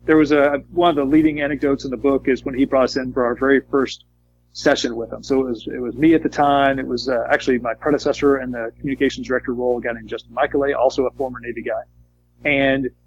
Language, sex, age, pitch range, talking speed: English, male, 40-59, 120-145 Hz, 250 wpm